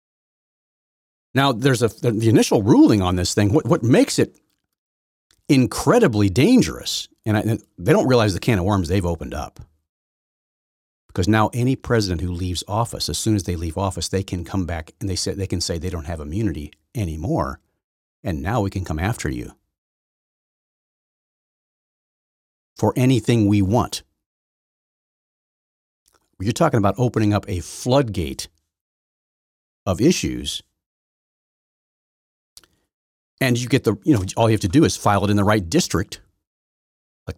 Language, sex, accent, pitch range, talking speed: English, male, American, 85-125 Hz, 155 wpm